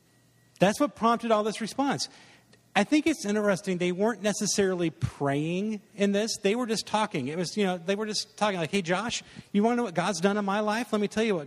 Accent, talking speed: American, 240 wpm